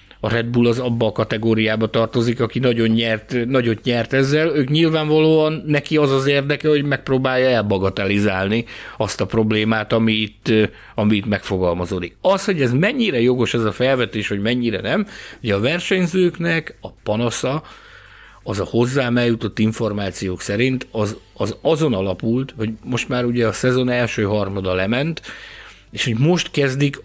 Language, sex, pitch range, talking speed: Hungarian, male, 105-140 Hz, 155 wpm